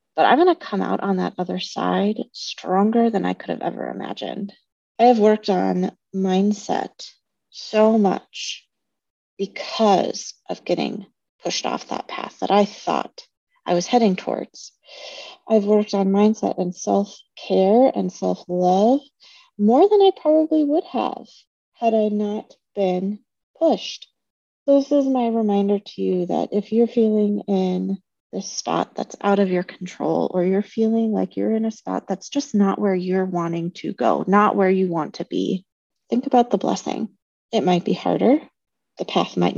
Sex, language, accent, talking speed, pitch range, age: female, English, American, 165 wpm, 185-225 Hz, 30-49